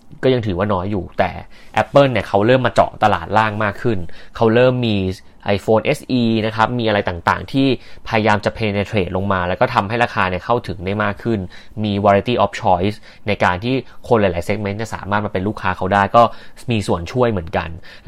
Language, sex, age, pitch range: Thai, male, 20-39, 95-115 Hz